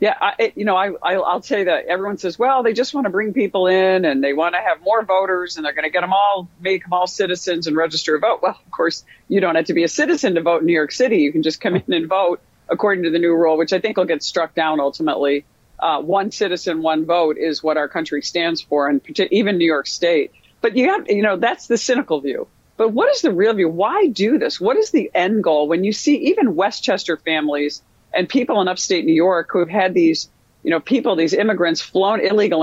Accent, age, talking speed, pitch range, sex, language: American, 50-69, 255 wpm, 165-225 Hz, female, English